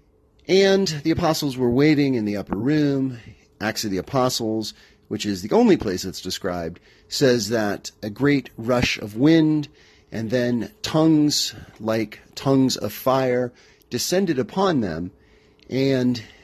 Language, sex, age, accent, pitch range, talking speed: English, male, 40-59, American, 105-145 Hz, 140 wpm